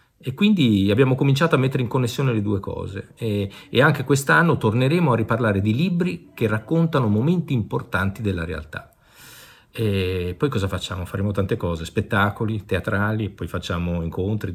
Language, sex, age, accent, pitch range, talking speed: Italian, male, 50-69, native, 90-115 Hz, 155 wpm